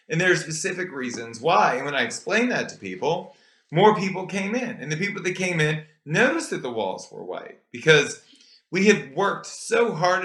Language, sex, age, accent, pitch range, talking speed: English, male, 30-49, American, 150-200 Hz, 205 wpm